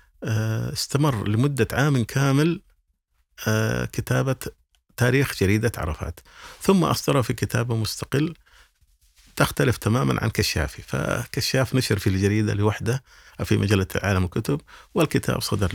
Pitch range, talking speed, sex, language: 85-110 Hz, 105 wpm, male, Arabic